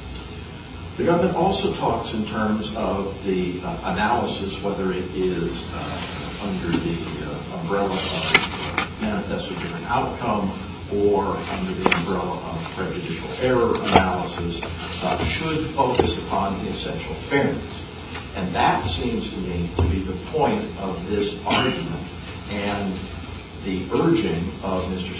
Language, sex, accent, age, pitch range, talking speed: English, male, American, 50-69, 85-105 Hz, 130 wpm